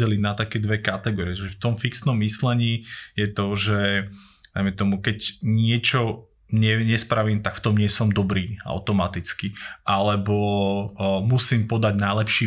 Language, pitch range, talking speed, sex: Slovak, 100-115 Hz, 125 wpm, male